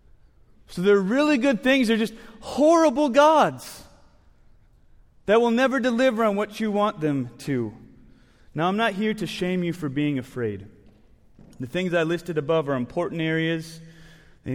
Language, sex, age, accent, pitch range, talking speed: English, male, 30-49, American, 175-250 Hz, 155 wpm